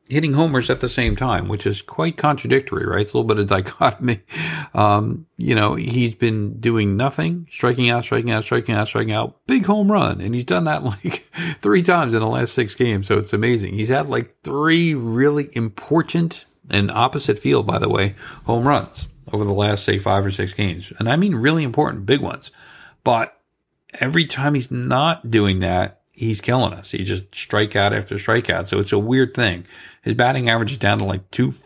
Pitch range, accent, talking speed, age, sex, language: 100-125 Hz, American, 205 wpm, 40-59, male, English